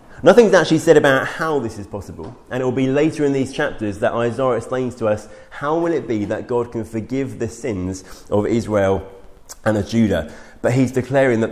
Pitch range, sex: 110-145 Hz, male